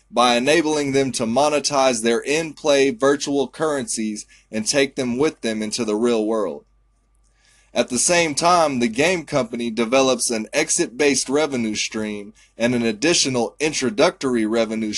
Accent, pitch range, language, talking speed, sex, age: American, 115-145 Hz, English, 140 wpm, male, 20-39